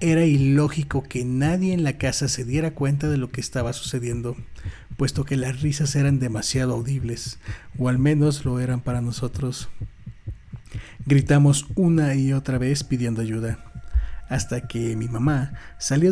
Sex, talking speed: male, 155 wpm